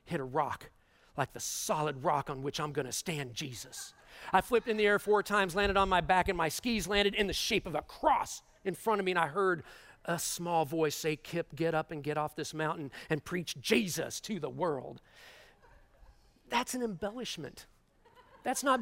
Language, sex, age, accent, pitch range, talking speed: English, male, 40-59, American, 155-205 Hz, 205 wpm